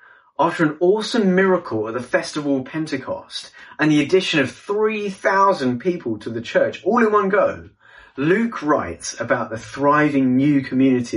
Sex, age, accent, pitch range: male, 30-49, British, 130-180 Hz